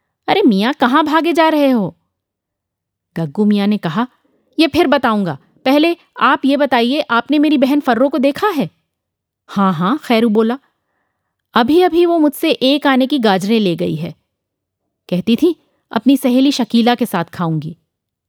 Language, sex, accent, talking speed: Hindi, female, native, 160 wpm